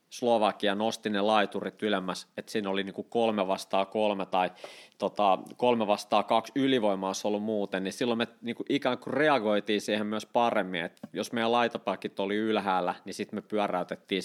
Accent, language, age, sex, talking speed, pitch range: native, Finnish, 30-49, male, 170 wpm, 95-115 Hz